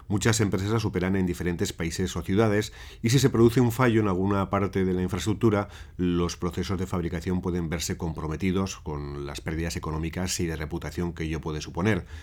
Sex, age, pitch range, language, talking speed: male, 40-59, 85-105 Hz, Spanish, 185 wpm